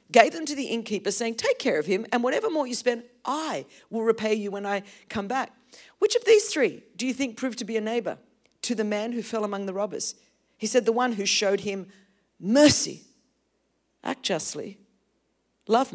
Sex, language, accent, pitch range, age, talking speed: female, English, Australian, 225-330 Hz, 50-69, 205 wpm